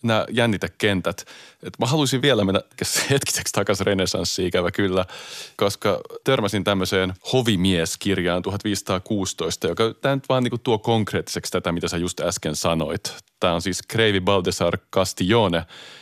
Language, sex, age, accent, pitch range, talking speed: Finnish, male, 30-49, native, 90-110 Hz, 135 wpm